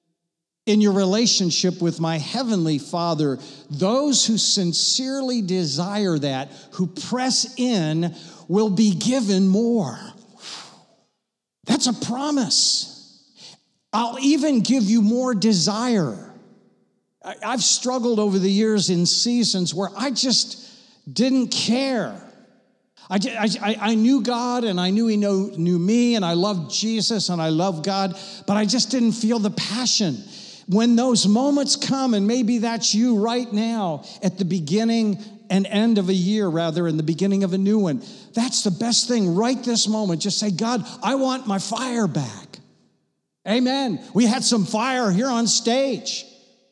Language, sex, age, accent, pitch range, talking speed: English, male, 50-69, American, 185-240 Hz, 150 wpm